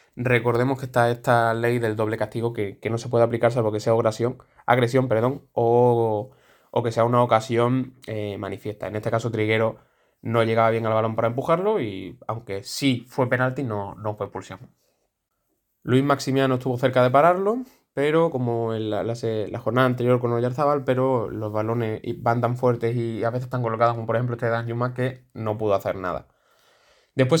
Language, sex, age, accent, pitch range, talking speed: Spanish, male, 20-39, Spanish, 115-130 Hz, 190 wpm